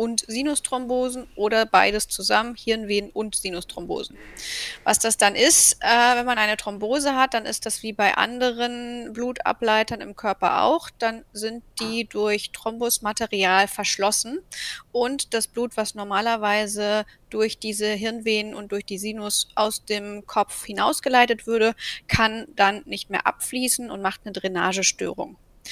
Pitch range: 205-245 Hz